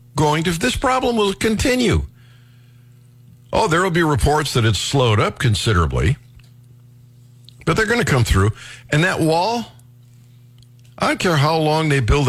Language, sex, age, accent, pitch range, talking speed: English, male, 60-79, American, 115-135 Hz, 155 wpm